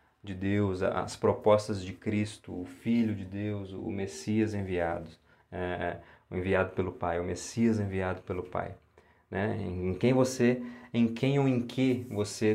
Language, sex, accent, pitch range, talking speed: Portuguese, male, Brazilian, 95-115 Hz, 160 wpm